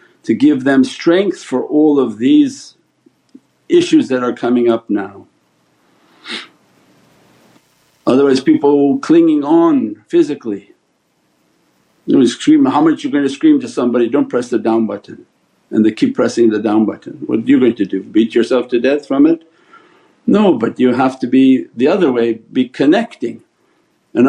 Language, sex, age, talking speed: English, male, 60-79, 160 wpm